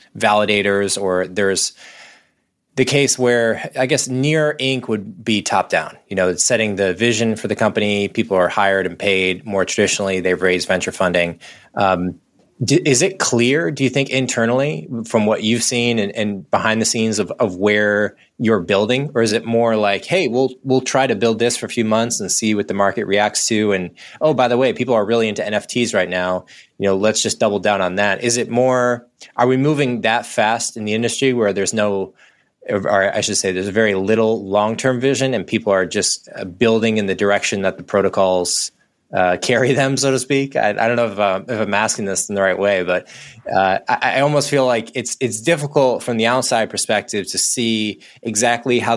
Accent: American